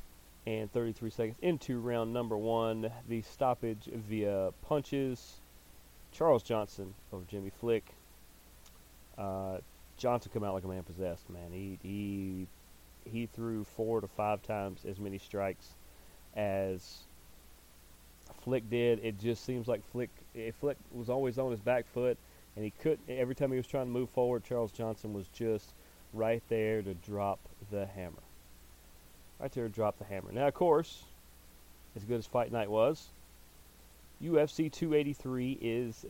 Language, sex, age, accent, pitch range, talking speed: English, male, 30-49, American, 85-115 Hz, 150 wpm